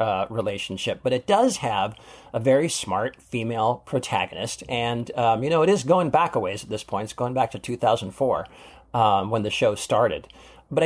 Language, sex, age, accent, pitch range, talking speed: English, male, 50-69, American, 105-135 Hz, 195 wpm